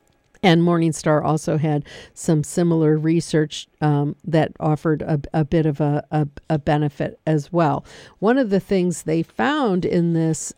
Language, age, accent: English, 50-69, American